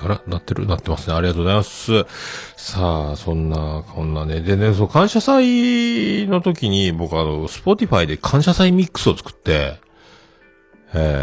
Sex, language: male, Japanese